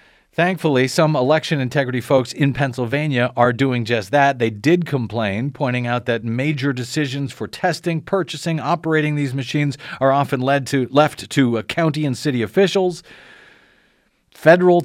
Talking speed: 150 wpm